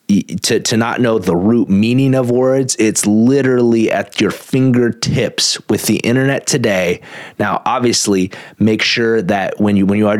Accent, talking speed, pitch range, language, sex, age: American, 165 wpm, 105-140 Hz, English, male, 30-49